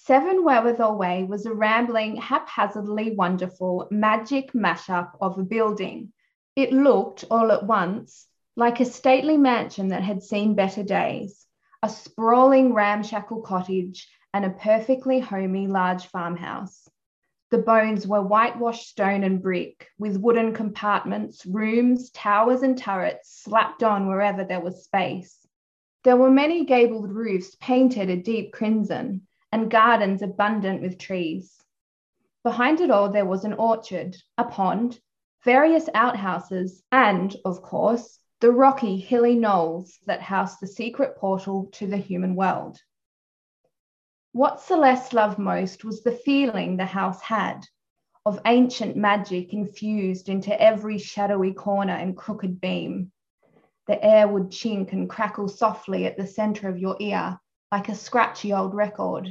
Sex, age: female, 20-39